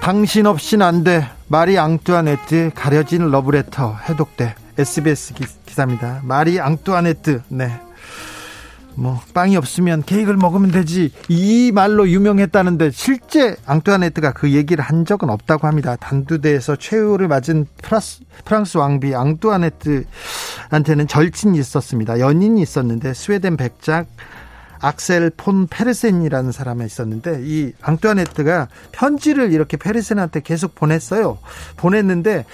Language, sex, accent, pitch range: Korean, male, native, 140-200 Hz